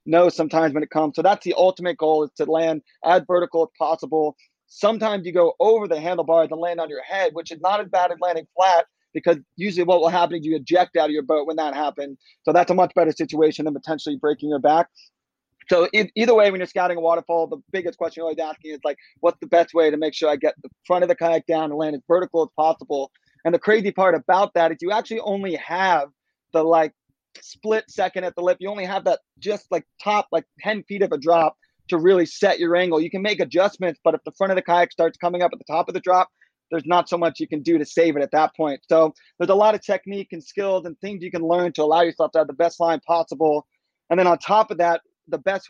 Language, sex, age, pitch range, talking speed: English, male, 30-49, 160-180 Hz, 265 wpm